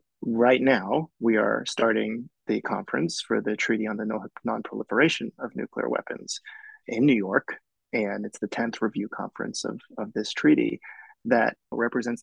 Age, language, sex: 30-49, English, male